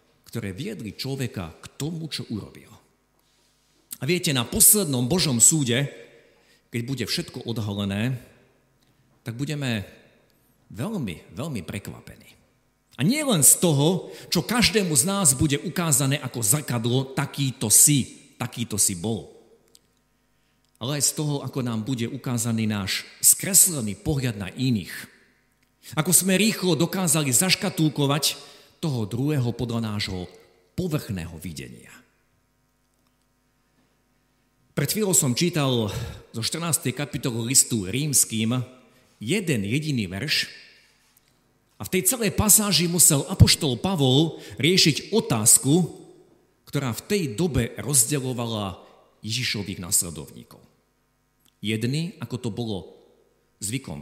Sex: male